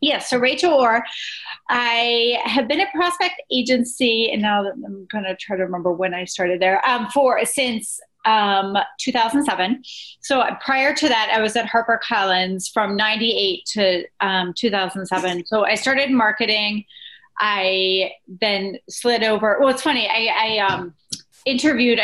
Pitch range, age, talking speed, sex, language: 195-255 Hz, 30-49, 150 wpm, female, English